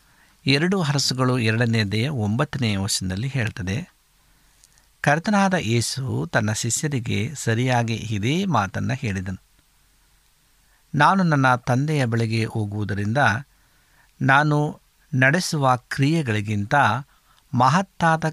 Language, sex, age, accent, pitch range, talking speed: Kannada, male, 60-79, native, 105-150 Hz, 75 wpm